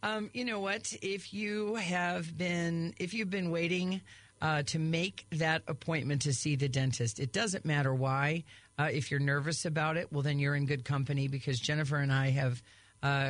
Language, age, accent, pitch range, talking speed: English, 40-59, American, 135-170 Hz, 195 wpm